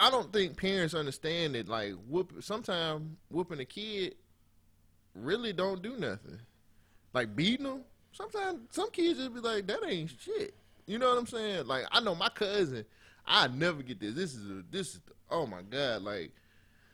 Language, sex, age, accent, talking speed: English, male, 20-39, American, 185 wpm